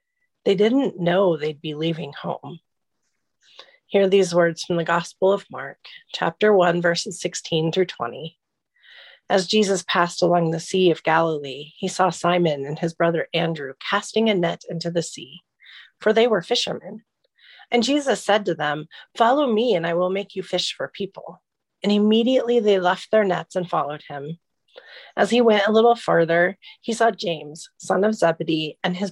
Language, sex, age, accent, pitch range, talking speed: English, female, 30-49, American, 170-215 Hz, 175 wpm